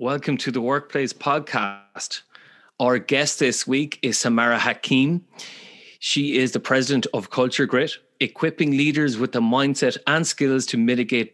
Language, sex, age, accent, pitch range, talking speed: English, male, 30-49, Irish, 120-140 Hz, 150 wpm